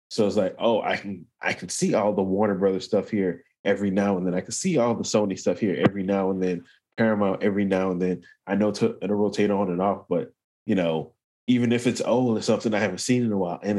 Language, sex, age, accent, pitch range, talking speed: English, male, 20-39, American, 100-120 Hz, 255 wpm